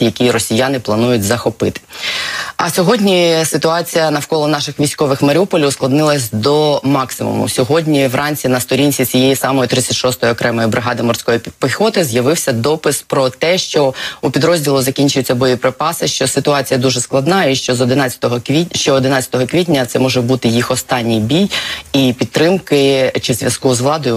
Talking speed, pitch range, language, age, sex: 145 wpm, 125-145 Hz, Ukrainian, 20-39, female